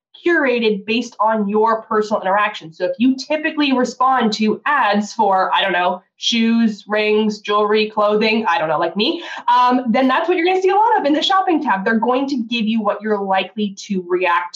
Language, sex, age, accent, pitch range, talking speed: English, female, 20-39, American, 205-255 Hz, 210 wpm